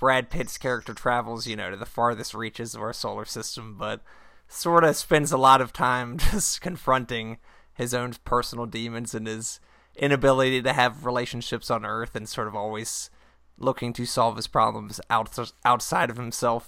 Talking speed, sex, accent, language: 175 wpm, male, American, English